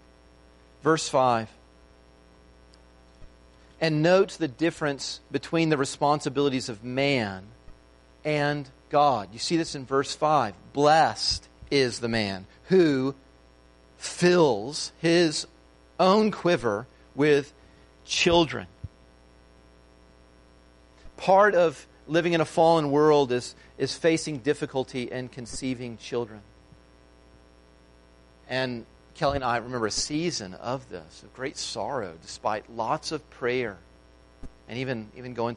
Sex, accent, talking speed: male, American, 110 wpm